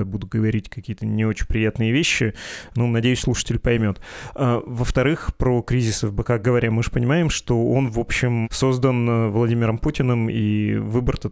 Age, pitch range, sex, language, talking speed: 30-49, 110-125 Hz, male, Russian, 160 wpm